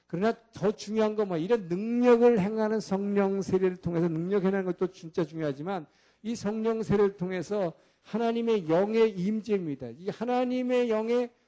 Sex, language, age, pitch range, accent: male, Korean, 50-69, 175-235 Hz, native